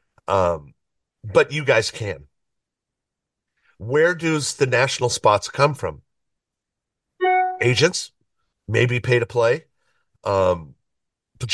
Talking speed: 100 wpm